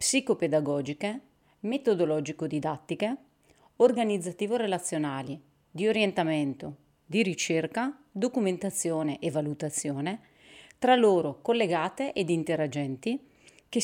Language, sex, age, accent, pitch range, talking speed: Italian, female, 30-49, native, 155-215 Hz, 70 wpm